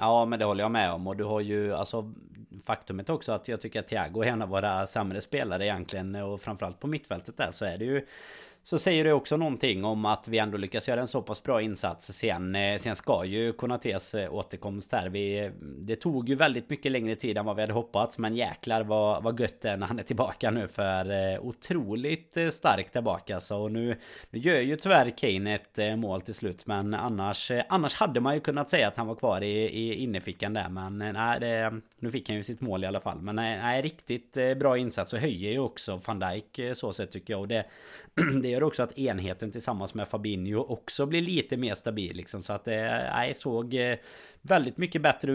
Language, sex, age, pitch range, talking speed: Swedish, male, 30-49, 100-125 Hz, 210 wpm